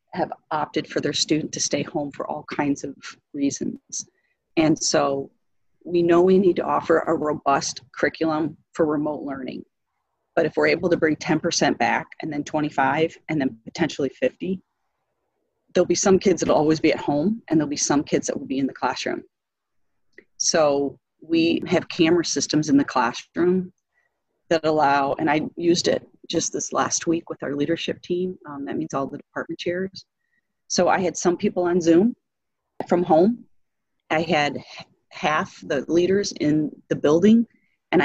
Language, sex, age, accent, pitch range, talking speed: English, female, 40-59, American, 150-185 Hz, 170 wpm